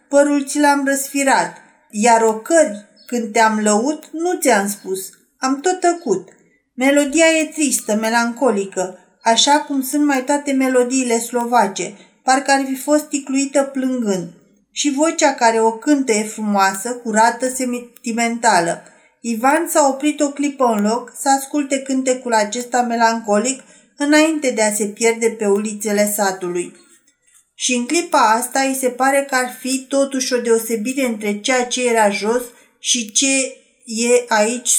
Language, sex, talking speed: Romanian, female, 145 wpm